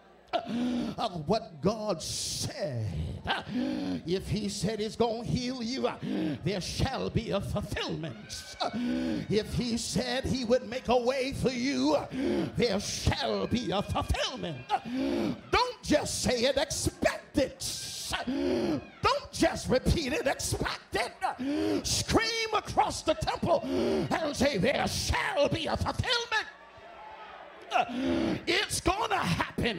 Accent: American